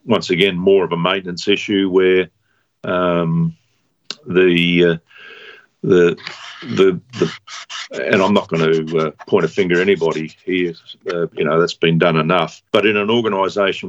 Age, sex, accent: 50-69, male, Australian